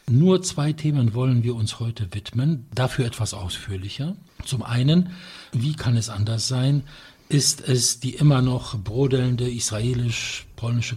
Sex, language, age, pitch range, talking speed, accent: male, English, 60-79, 105-135 Hz, 135 wpm, German